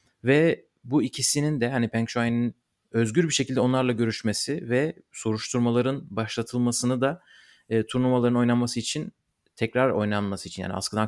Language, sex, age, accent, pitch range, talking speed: Turkish, male, 30-49, native, 110-130 Hz, 135 wpm